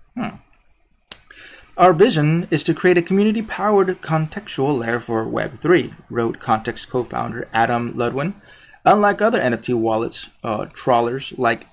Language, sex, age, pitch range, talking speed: English, male, 20-39, 120-155 Hz, 125 wpm